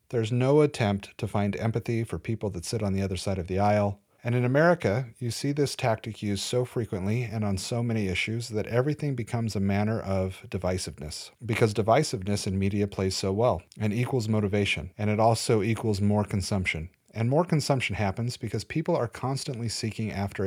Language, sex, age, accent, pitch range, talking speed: English, male, 40-59, American, 100-125 Hz, 190 wpm